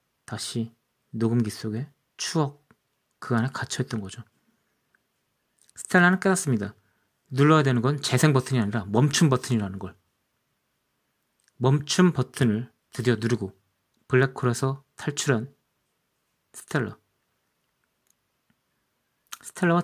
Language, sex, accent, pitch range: Korean, male, native, 110-140 Hz